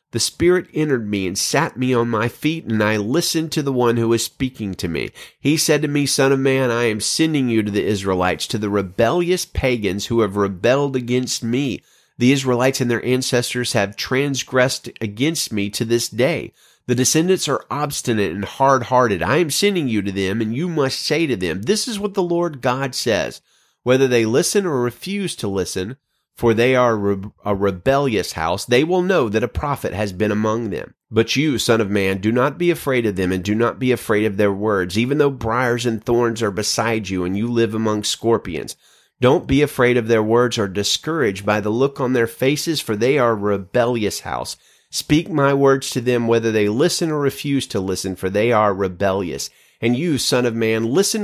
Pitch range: 105-140 Hz